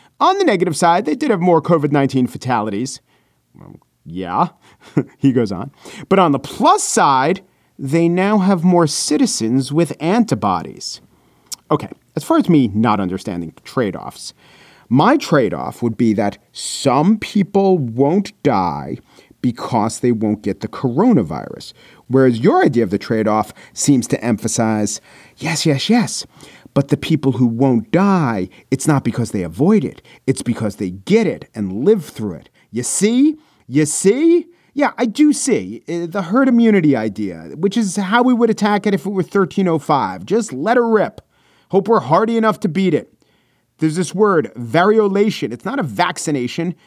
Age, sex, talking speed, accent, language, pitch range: 40-59, male, 160 wpm, American, English, 125-200 Hz